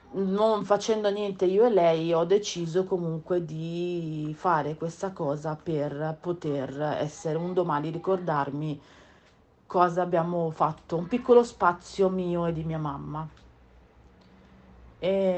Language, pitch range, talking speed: Italian, 160-195 Hz, 120 wpm